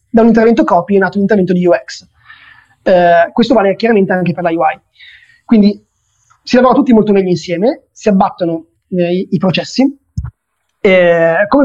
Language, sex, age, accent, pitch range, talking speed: Italian, male, 20-39, native, 175-215 Hz, 170 wpm